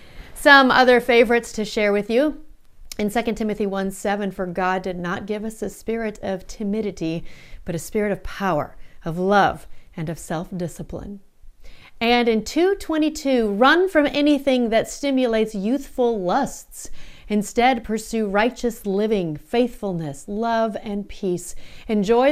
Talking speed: 145 wpm